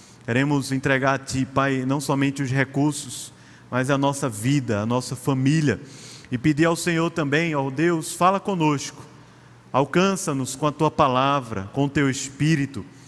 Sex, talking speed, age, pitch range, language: male, 155 wpm, 30-49, 125-150 Hz, Portuguese